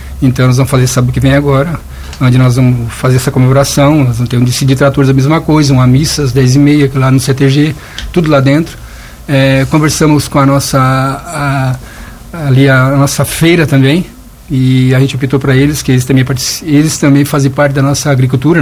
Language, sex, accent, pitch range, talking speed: Portuguese, male, Brazilian, 130-145 Hz, 205 wpm